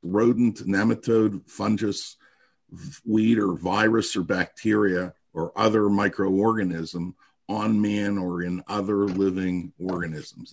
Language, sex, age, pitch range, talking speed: English, male, 50-69, 90-115 Hz, 105 wpm